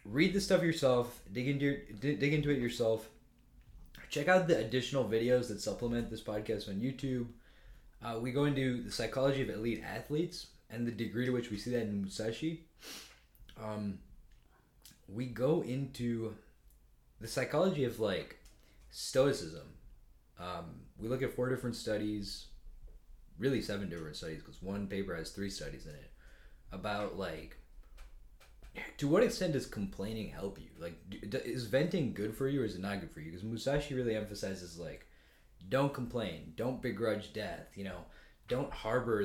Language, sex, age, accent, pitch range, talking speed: English, male, 20-39, American, 100-125 Hz, 165 wpm